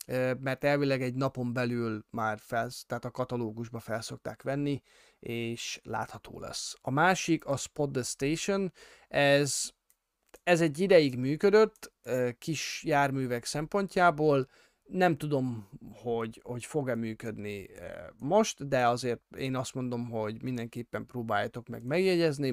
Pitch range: 120-145 Hz